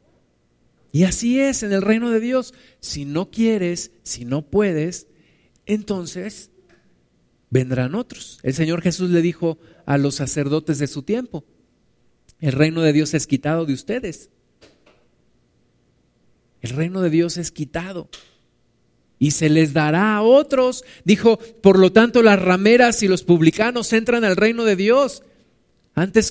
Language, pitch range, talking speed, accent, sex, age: Spanish, 145-220 Hz, 145 wpm, Mexican, male, 50-69